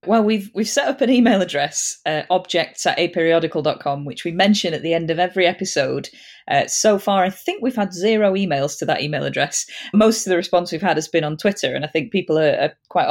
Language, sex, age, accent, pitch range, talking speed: English, female, 30-49, British, 150-185 Hz, 235 wpm